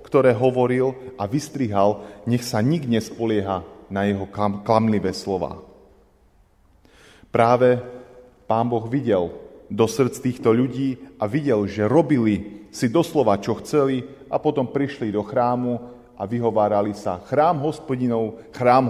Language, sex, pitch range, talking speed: Slovak, male, 100-125 Hz, 125 wpm